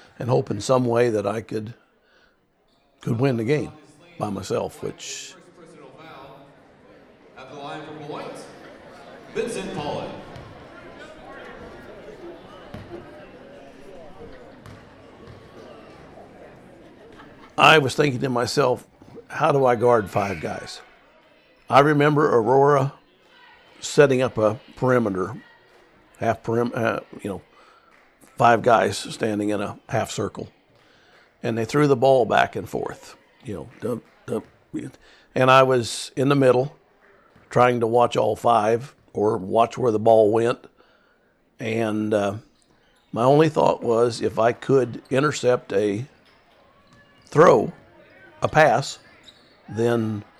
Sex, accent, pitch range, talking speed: male, American, 110-135 Hz, 105 wpm